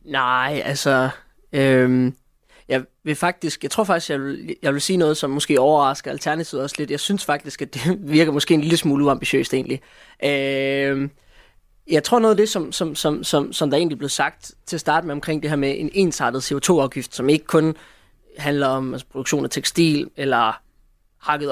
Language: Danish